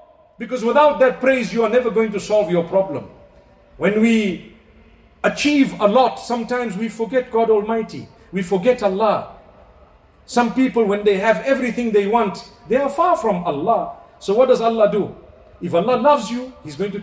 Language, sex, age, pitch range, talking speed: English, male, 50-69, 200-265 Hz, 175 wpm